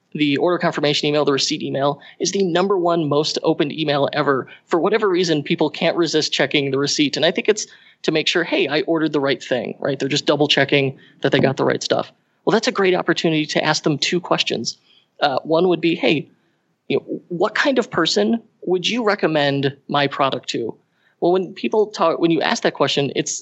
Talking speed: 215 wpm